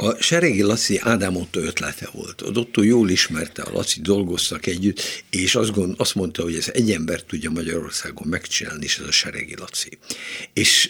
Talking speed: 165 wpm